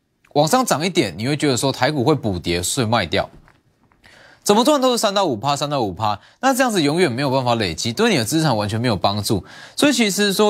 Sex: male